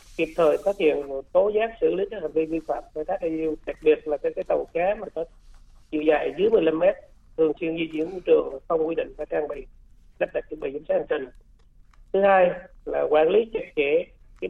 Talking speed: 235 wpm